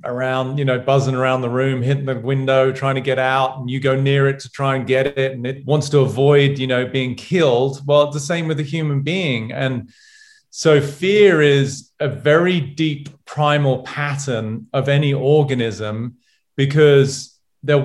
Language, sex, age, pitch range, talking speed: English, male, 30-49, 130-150 Hz, 185 wpm